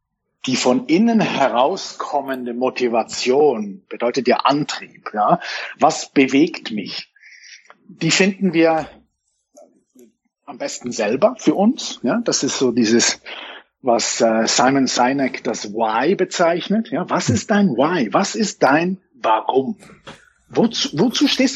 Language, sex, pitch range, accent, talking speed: German, male, 130-215 Hz, German, 110 wpm